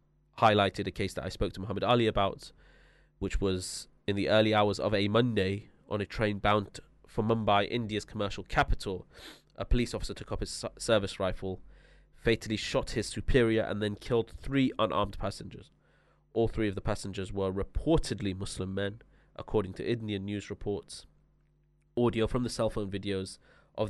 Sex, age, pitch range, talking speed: male, 20-39, 100-125 Hz, 170 wpm